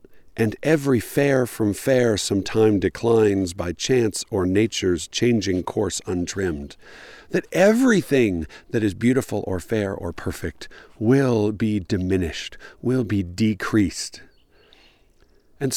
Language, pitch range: English, 95-130 Hz